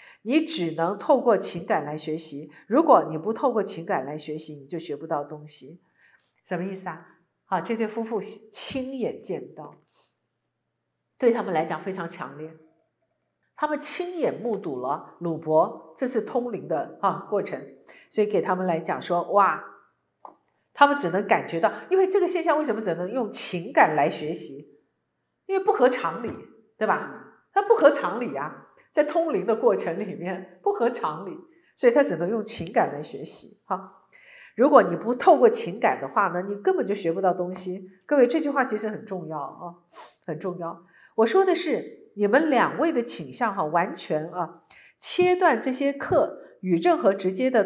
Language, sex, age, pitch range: Chinese, female, 50-69, 180-275 Hz